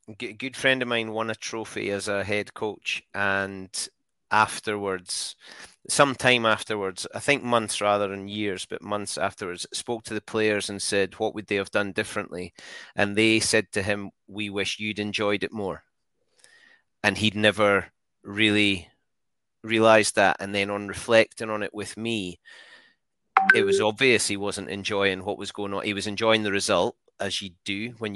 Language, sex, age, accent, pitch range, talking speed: English, male, 30-49, British, 100-115 Hz, 175 wpm